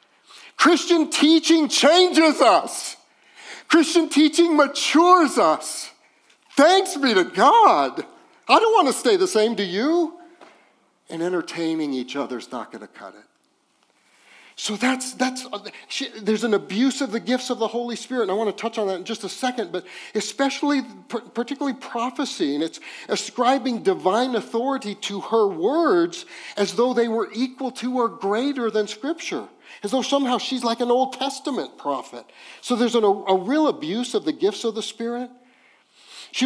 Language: English